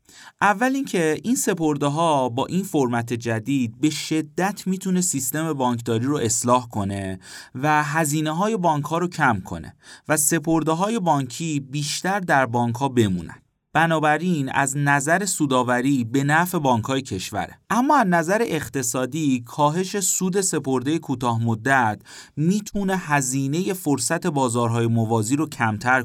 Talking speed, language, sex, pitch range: 135 wpm, Persian, male, 115-165 Hz